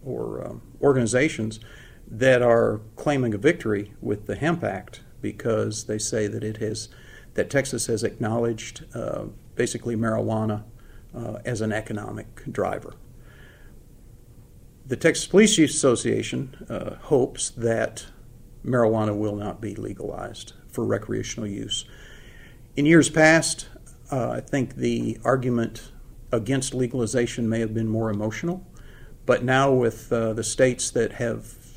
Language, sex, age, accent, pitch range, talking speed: English, male, 50-69, American, 110-130 Hz, 130 wpm